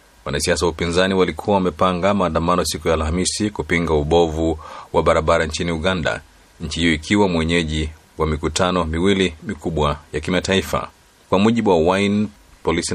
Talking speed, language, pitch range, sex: 140 wpm, Swahili, 80-95 Hz, male